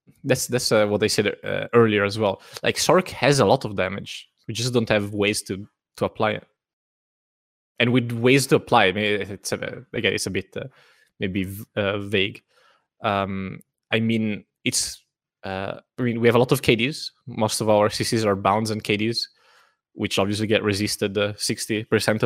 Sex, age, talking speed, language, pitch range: male, 20-39, 195 wpm, English, 100-120 Hz